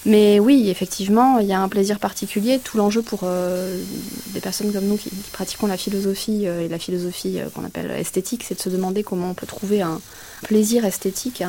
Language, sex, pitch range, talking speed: French, female, 185-215 Hz, 215 wpm